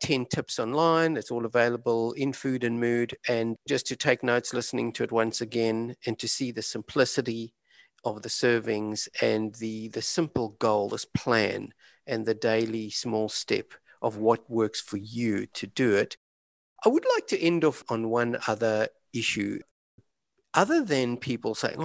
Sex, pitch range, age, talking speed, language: male, 115-140 Hz, 50-69, 170 wpm, English